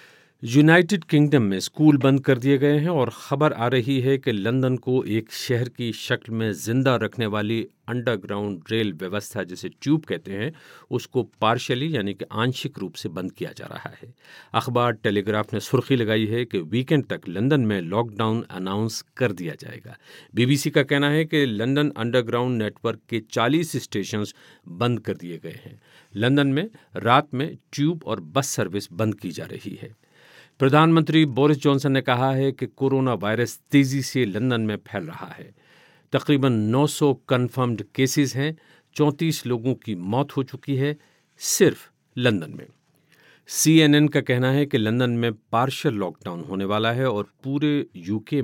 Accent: native